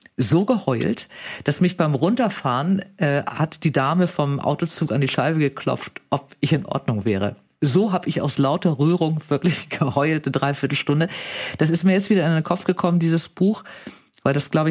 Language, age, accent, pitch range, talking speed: German, 50-69, German, 130-165 Hz, 185 wpm